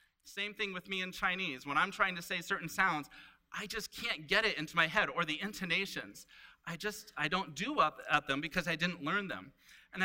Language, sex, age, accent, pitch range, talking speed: English, male, 30-49, American, 155-195 Hz, 225 wpm